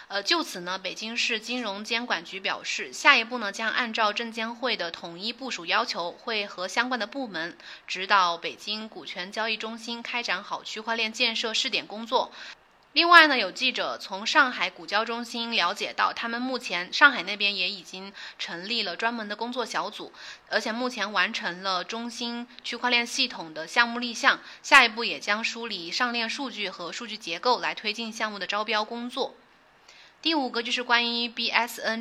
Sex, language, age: female, Chinese, 20-39